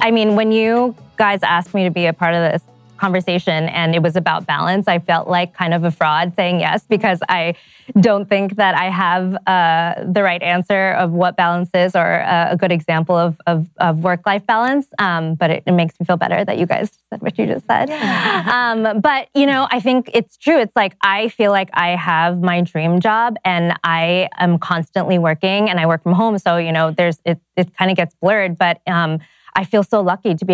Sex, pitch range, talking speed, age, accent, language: female, 170-200 Hz, 230 wpm, 20-39, American, English